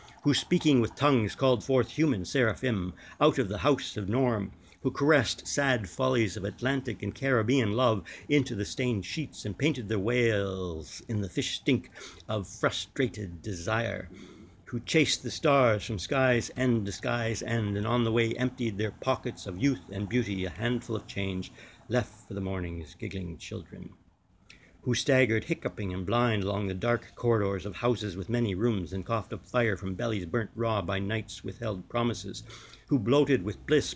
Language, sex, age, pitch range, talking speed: English, male, 60-79, 100-125 Hz, 175 wpm